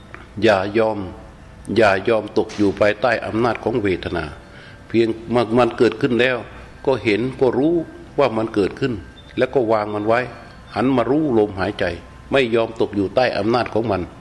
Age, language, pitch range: 60-79, Thai, 100-125 Hz